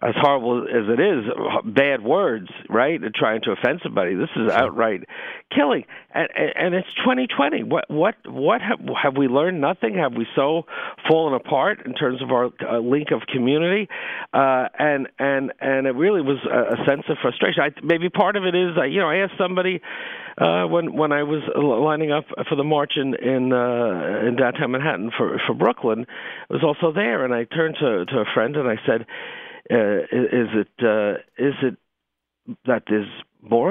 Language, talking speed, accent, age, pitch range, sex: English, 185 wpm, American, 50-69, 110-150 Hz, male